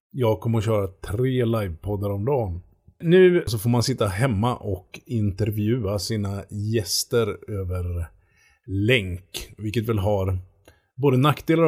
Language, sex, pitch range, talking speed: Swedish, male, 100-125 Hz, 130 wpm